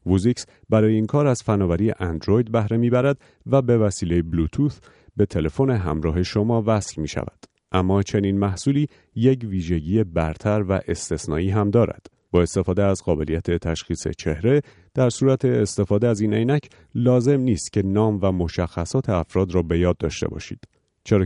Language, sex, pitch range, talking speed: Persian, male, 85-120 Hz, 160 wpm